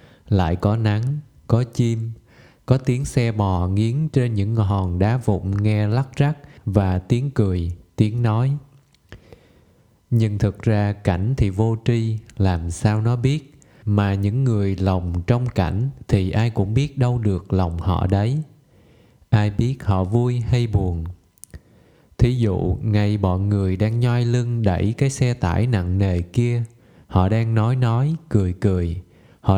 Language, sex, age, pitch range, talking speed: Vietnamese, male, 20-39, 95-120 Hz, 155 wpm